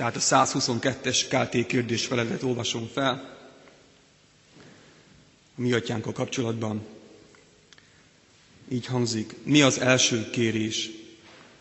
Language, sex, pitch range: Hungarian, male, 115-130 Hz